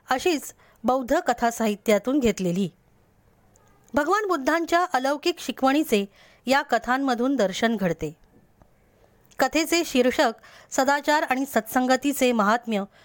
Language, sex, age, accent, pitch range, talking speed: Marathi, female, 20-39, native, 220-285 Hz, 85 wpm